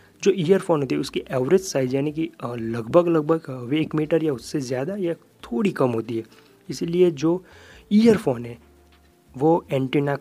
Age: 30-49